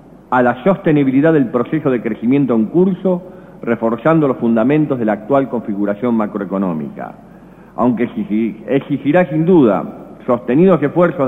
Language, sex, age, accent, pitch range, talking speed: Spanish, male, 50-69, Argentinian, 120-170 Hz, 120 wpm